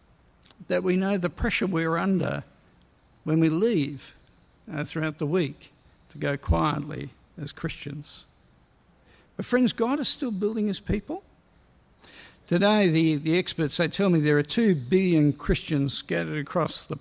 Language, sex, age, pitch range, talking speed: English, male, 60-79, 150-195 Hz, 150 wpm